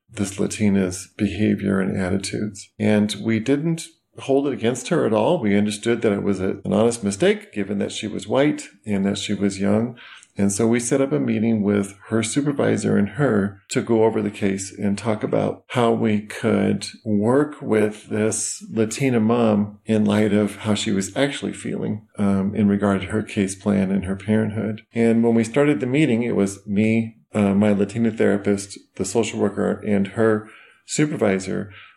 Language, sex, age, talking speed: English, male, 40-59, 185 wpm